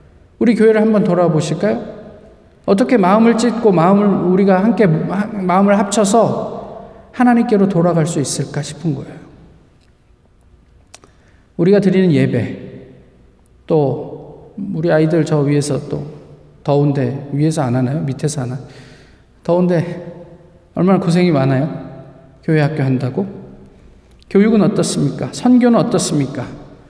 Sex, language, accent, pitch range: male, Korean, native, 145-200 Hz